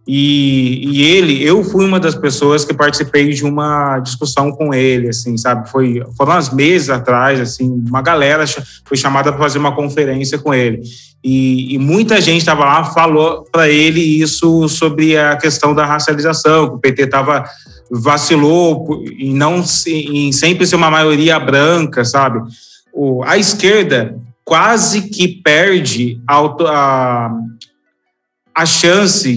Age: 20-39